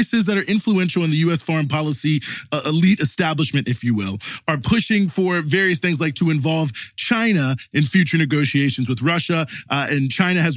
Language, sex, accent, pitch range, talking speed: English, male, American, 125-170 Hz, 180 wpm